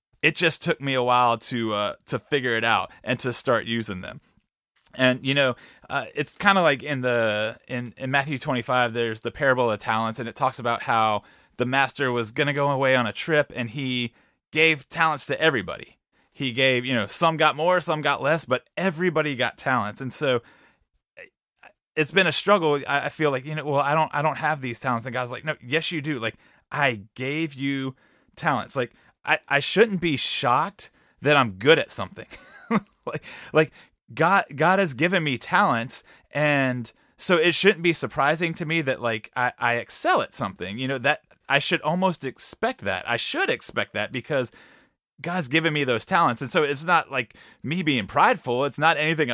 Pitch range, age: 125-155 Hz, 30-49